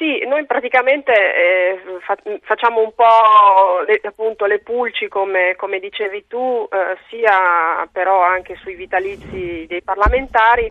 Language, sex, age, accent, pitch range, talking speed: Italian, female, 20-39, native, 180-220 Hz, 130 wpm